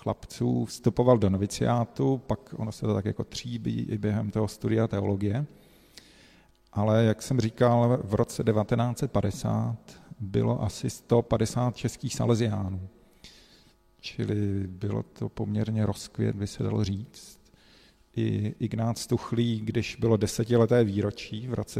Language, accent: Czech, native